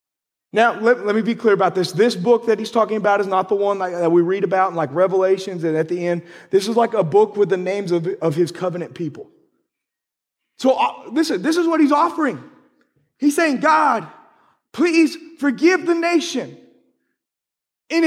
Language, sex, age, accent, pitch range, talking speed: English, male, 30-49, American, 210-320 Hz, 195 wpm